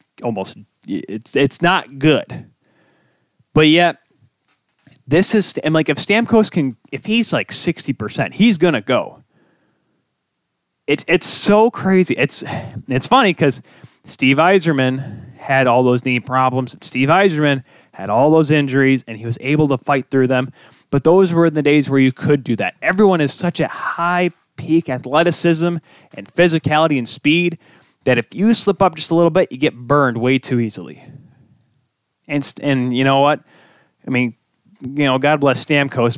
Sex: male